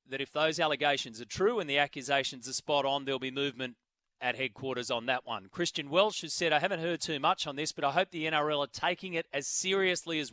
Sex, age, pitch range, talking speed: male, 30-49, 135-160 Hz, 245 wpm